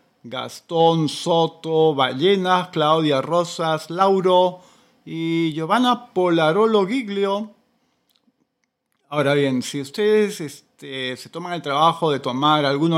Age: 40-59